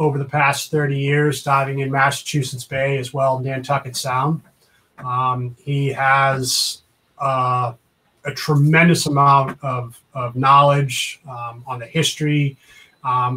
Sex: male